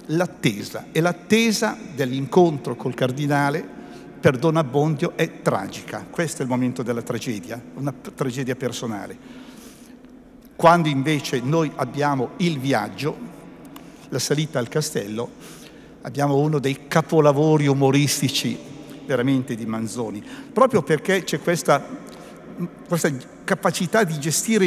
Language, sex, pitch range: Italian, male, 145-180 Hz